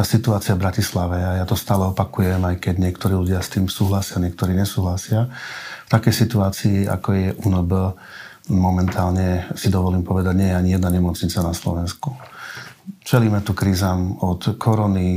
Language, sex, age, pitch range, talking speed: Slovak, male, 40-59, 90-100 Hz, 160 wpm